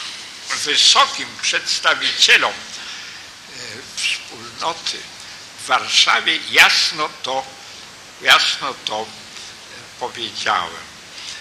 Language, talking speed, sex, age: Polish, 55 wpm, male, 60-79